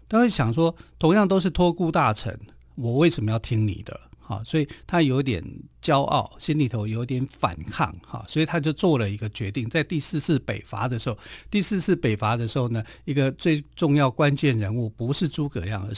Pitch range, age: 110-155 Hz, 50-69